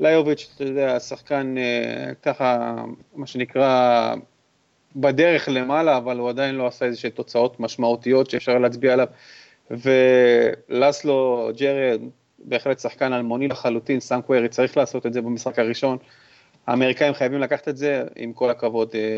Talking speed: 135 wpm